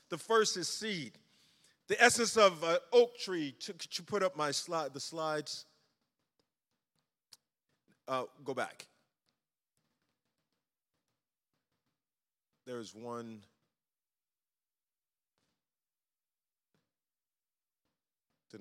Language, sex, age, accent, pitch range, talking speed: English, male, 40-59, American, 130-175 Hz, 85 wpm